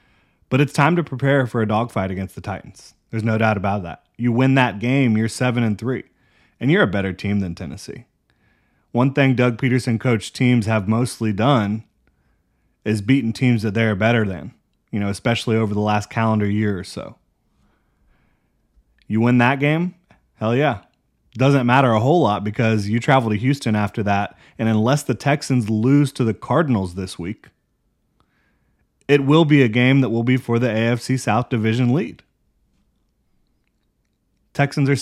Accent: American